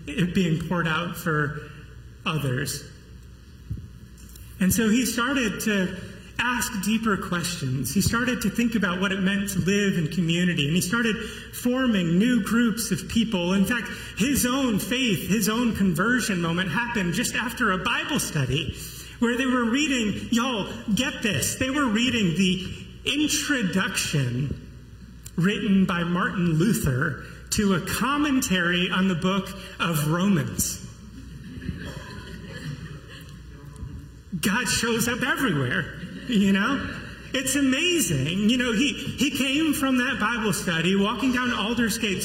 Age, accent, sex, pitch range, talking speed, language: 30-49, American, male, 180-245 Hz, 130 wpm, English